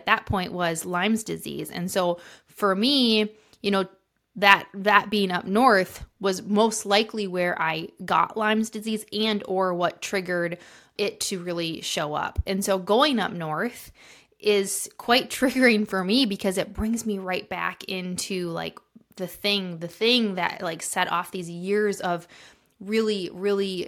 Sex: female